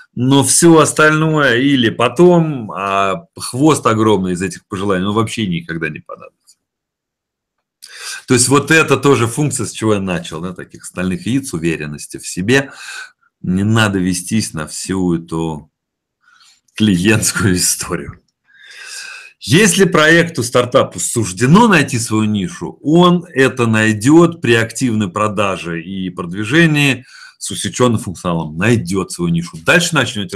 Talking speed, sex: 125 wpm, male